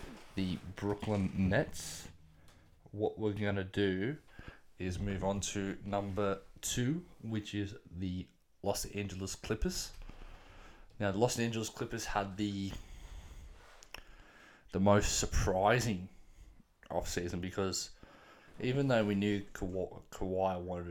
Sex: male